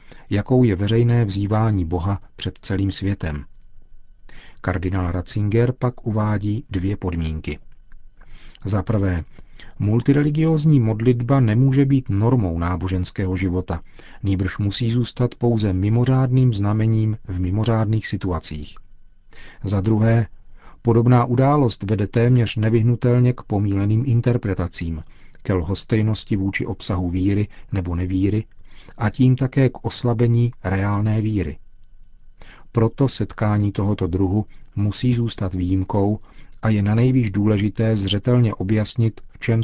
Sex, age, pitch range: male, 40-59, 95-115 Hz